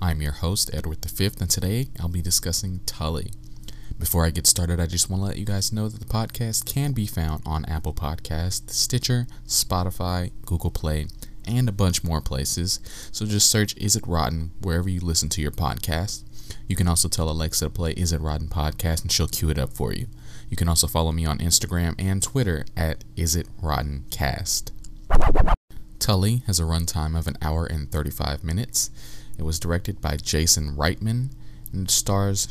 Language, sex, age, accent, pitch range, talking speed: English, male, 20-39, American, 75-95 Hz, 190 wpm